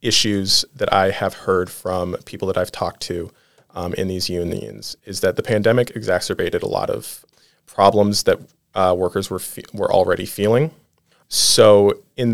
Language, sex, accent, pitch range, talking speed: English, male, American, 100-115 Hz, 165 wpm